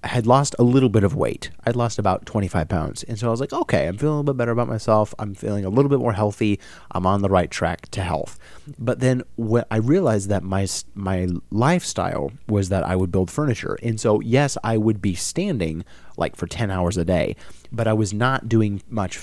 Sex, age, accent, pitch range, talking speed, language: male, 30-49, American, 95-120 Hz, 230 wpm, English